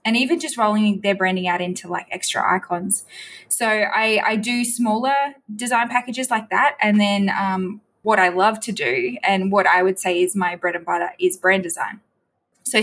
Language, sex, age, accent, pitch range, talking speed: English, female, 10-29, Australian, 185-215 Hz, 195 wpm